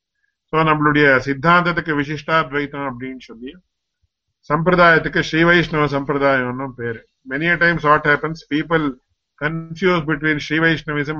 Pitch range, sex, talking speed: 135-165 Hz, male, 130 wpm